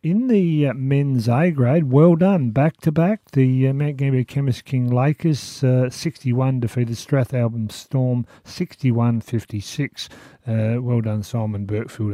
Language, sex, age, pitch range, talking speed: English, male, 50-69, 110-135 Hz, 125 wpm